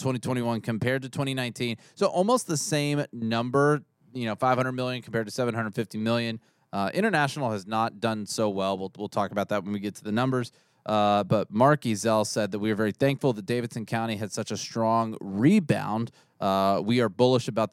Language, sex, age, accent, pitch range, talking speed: English, male, 20-39, American, 110-130 Hz, 195 wpm